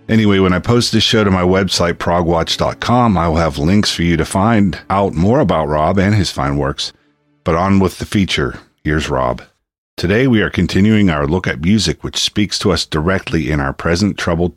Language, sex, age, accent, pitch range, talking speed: English, male, 50-69, American, 80-100 Hz, 205 wpm